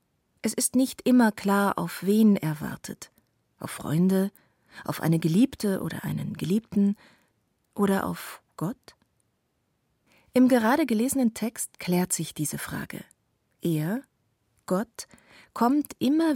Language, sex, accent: German, female, German